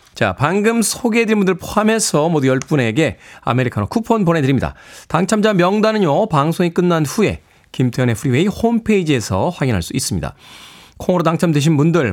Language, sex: Korean, male